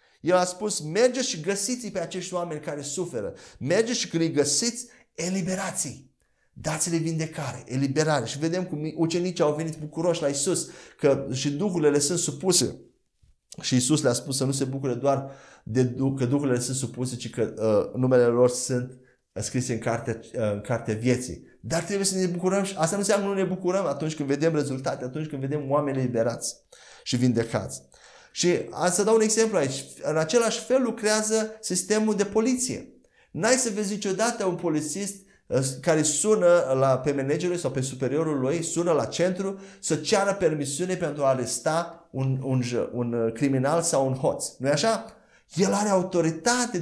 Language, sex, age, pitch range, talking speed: Romanian, male, 30-49, 130-195 Hz, 170 wpm